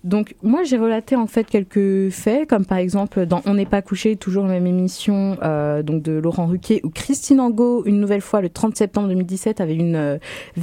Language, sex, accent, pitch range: French, female, French, 160-205 Hz